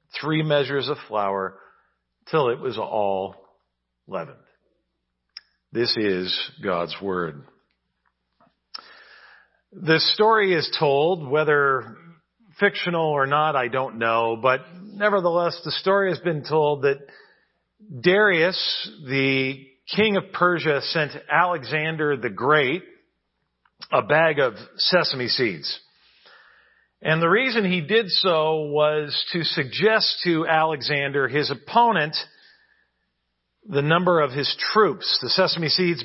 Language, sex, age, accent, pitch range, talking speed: English, male, 50-69, American, 130-180 Hz, 110 wpm